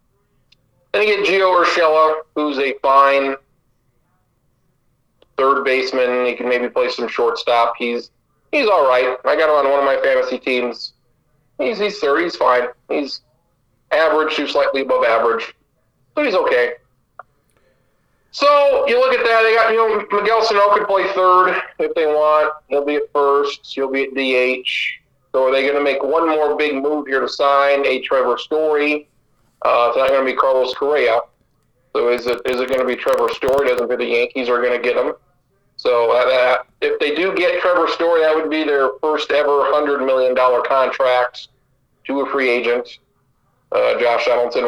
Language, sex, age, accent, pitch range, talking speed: English, male, 40-59, American, 130-195 Hz, 180 wpm